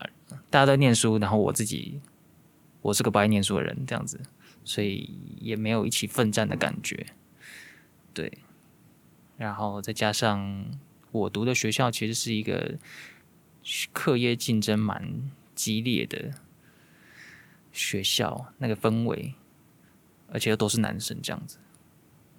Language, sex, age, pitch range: Chinese, male, 20-39, 105-130 Hz